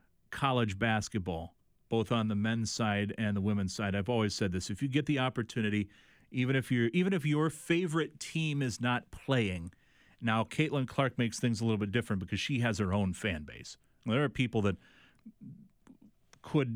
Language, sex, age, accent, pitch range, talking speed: English, male, 30-49, American, 105-130 Hz, 185 wpm